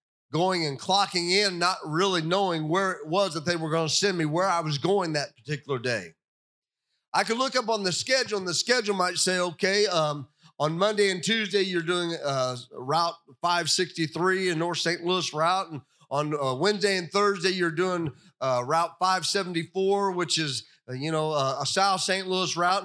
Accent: American